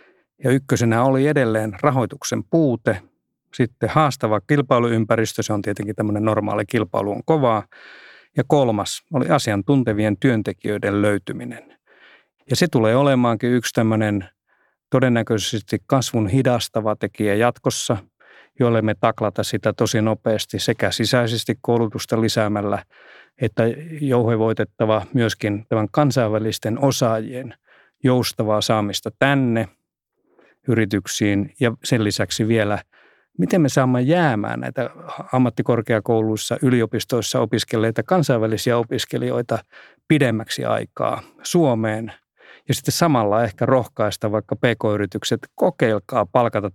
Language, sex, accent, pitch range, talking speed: Finnish, male, native, 110-130 Hz, 100 wpm